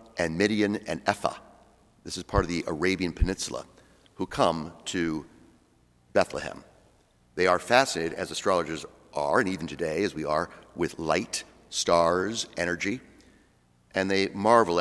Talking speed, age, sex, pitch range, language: 140 wpm, 50-69, male, 75-95 Hz, English